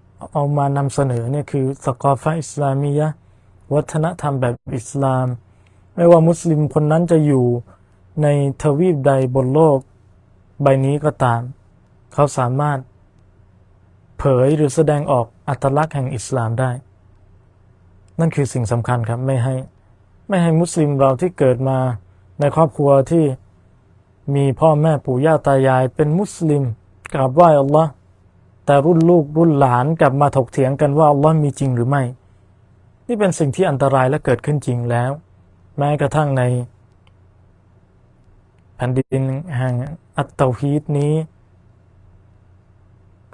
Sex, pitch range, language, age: male, 105-145 Hz, Thai, 20-39